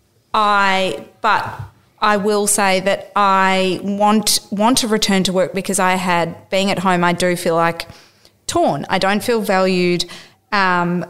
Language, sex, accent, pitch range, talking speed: English, female, Australian, 175-195 Hz, 155 wpm